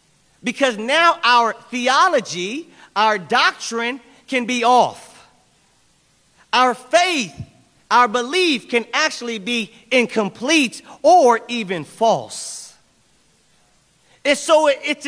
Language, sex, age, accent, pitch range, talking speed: English, male, 40-59, American, 225-285 Hz, 90 wpm